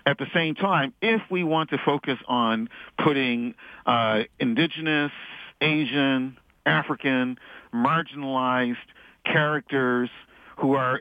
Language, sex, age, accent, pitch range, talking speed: English, male, 50-69, American, 120-155 Hz, 105 wpm